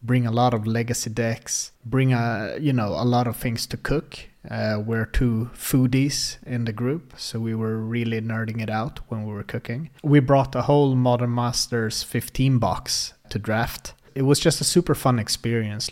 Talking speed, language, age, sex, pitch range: 190 wpm, English, 30-49, male, 110-130 Hz